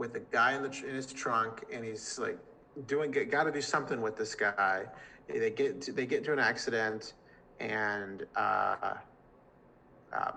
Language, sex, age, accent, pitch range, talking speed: English, male, 30-49, American, 115-140 Hz, 170 wpm